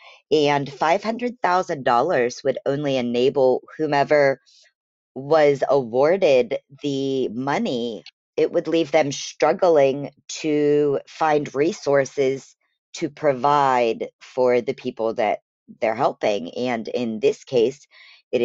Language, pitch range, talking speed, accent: English, 125-150 Hz, 100 wpm, American